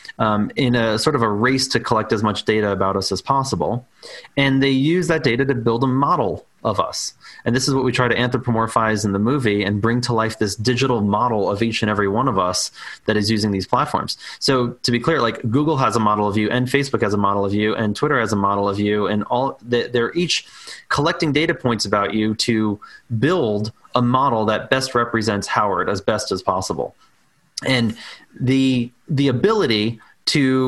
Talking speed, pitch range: 210 wpm, 110-135 Hz